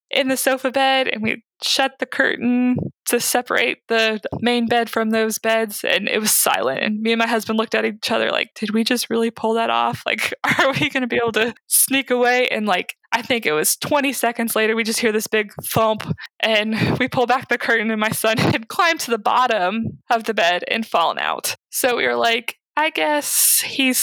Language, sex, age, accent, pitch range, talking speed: English, female, 20-39, American, 220-250 Hz, 220 wpm